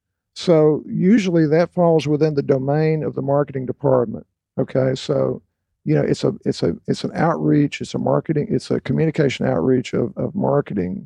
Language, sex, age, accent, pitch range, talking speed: English, male, 50-69, American, 135-165 Hz, 175 wpm